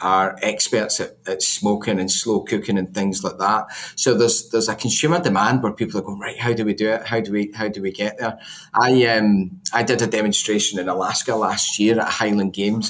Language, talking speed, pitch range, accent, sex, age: English, 230 wpm, 95-110 Hz, British, male, 30-49